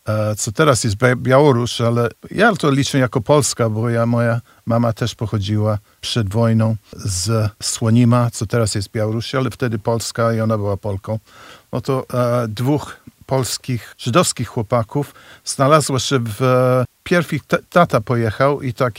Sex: male